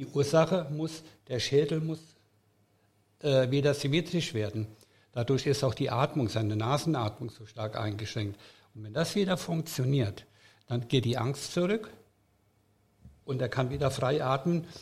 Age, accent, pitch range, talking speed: 60-79, German, 115-150 Hz, 145 wpm